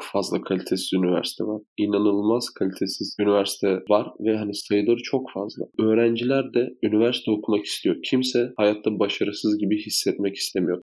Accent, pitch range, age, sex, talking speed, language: native, 100-110 Hz, 20-39, male, 130 wpm, Turkish